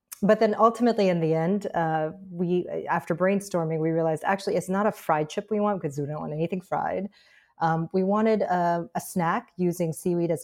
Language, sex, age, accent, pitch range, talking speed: English, female, 30-49, American, 160-205 Hz, 200 wpm